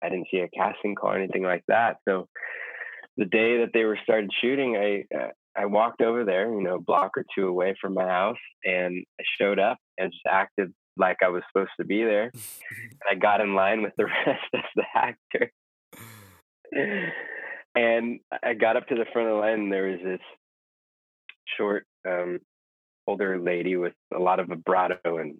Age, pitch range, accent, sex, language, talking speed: 20-39, 90-130 Hz, American, male, English, 195 wpm